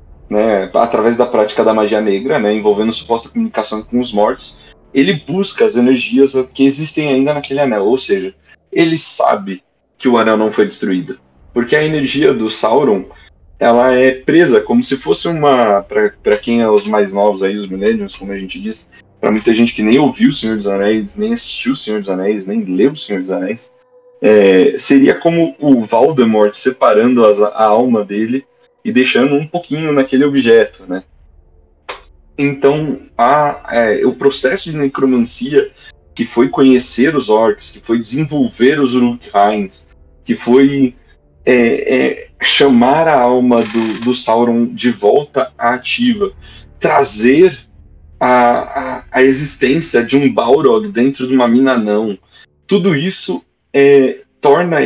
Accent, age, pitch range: Brazilian, 20-39, 105-150 Hz